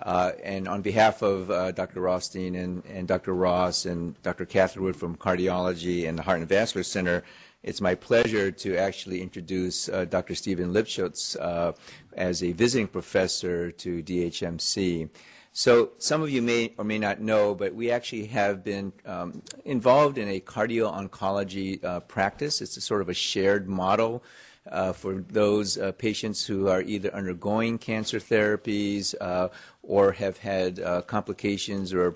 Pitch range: 90-105 Hz